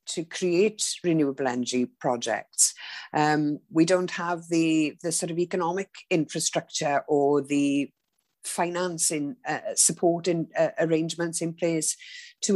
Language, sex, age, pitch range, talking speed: English, female, 50-69, 155-195 Hz, 125 wpm